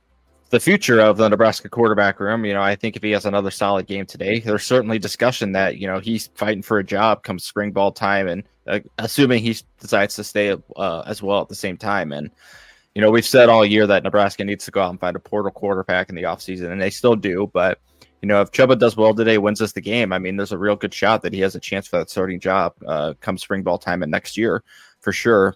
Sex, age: male, 20-39